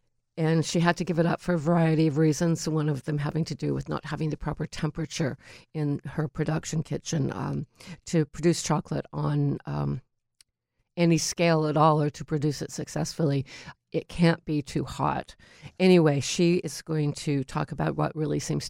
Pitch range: 145-170 Hz